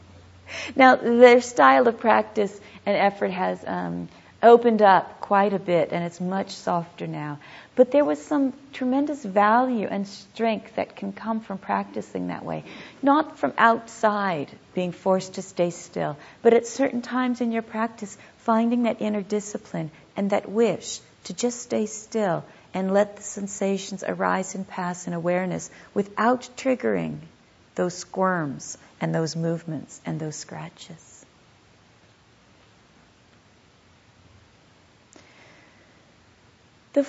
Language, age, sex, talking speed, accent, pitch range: English, 50-69, female, 130 wpm, American, 175-235 Hz